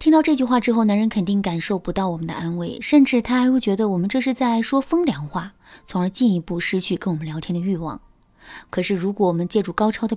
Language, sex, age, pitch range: Chinese, female, 20-39, 175-225 Hz